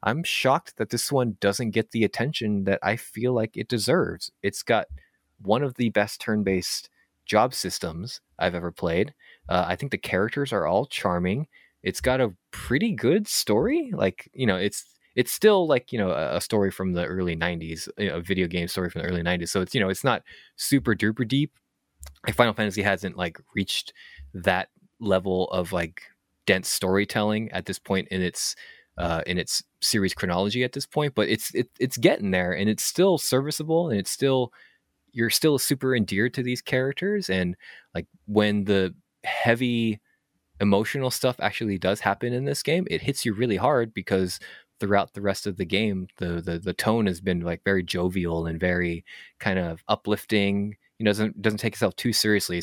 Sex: male